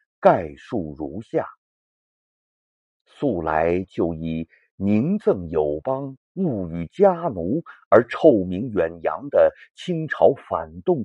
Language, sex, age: Chinese, male, 50-69